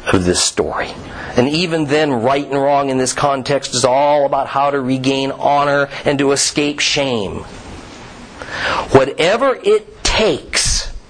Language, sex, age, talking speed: English, male, 50-69, 140 wpm